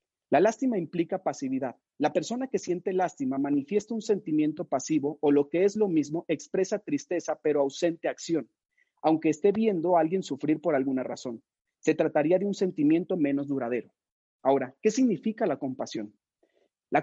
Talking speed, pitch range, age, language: 160 wpm, 145-195 Hz, 40-59, Spanish